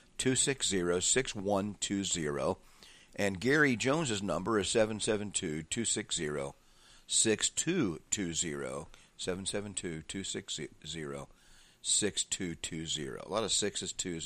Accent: American